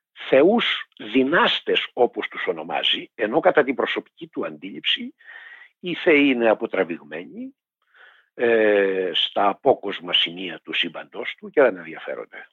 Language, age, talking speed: Greek, 60-79, 115 wpm